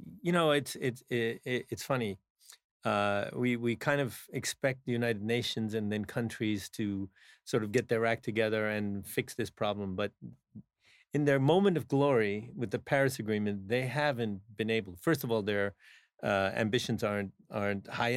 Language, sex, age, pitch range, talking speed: English, male, 40-59, 105-135 Hz, 175 wpm